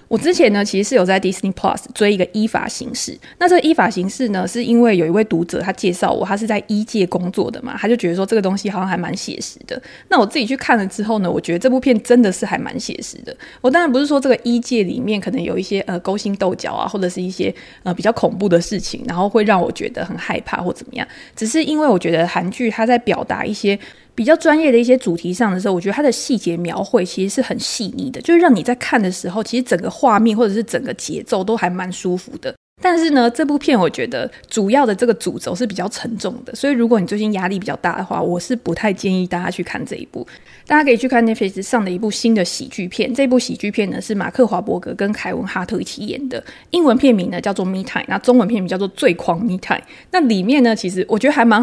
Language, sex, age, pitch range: Chinese, female, 20-39, 190-245 Hz